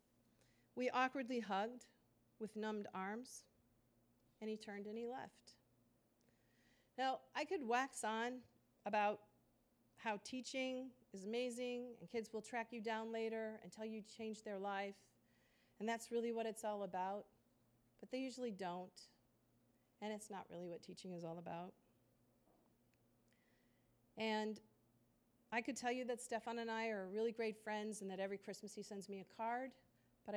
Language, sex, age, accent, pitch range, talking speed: English, female, 40-59, American, 185-235 Hz, 155 wpm